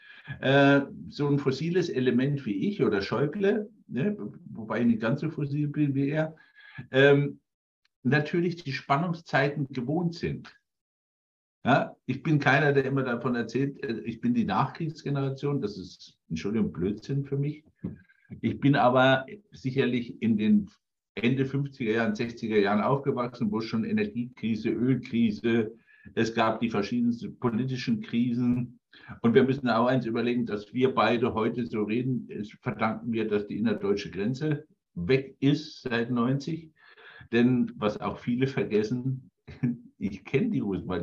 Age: 60-79